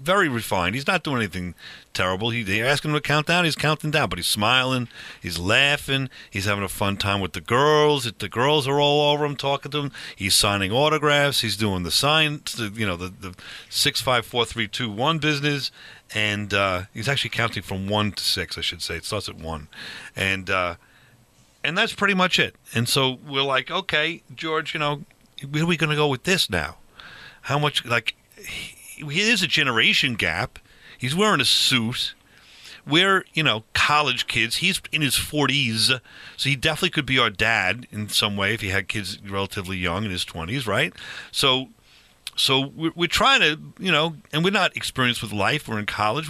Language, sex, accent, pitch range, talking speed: English, male, American, 105-150 Hz, 205 wpm